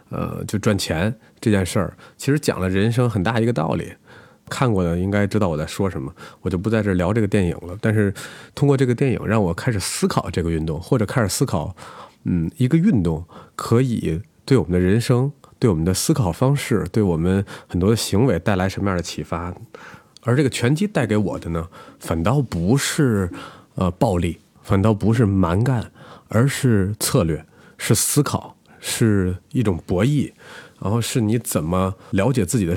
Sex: male